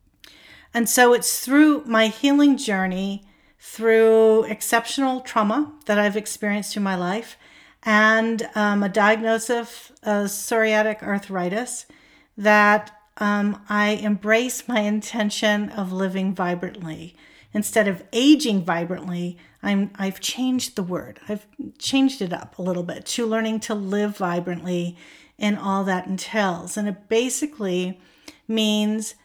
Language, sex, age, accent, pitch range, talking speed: English, female, 50-69, American, 195-225 Hz, 125 wpm